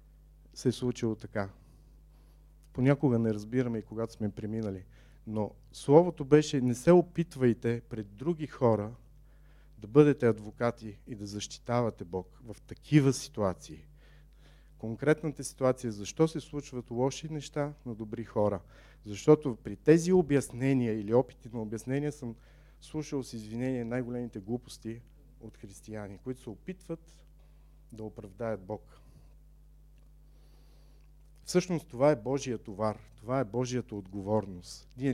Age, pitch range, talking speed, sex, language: 40-59, 110-145 Hz, 125 wpm, male, Bulgarian